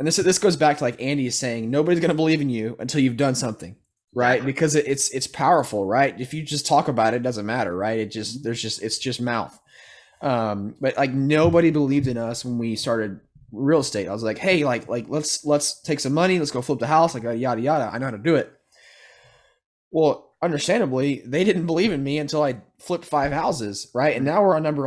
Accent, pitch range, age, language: American, 120-150 Hz, 20-39, English